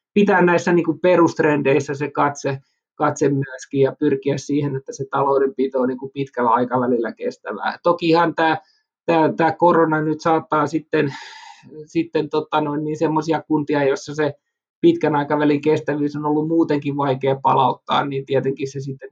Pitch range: 140-170 Hz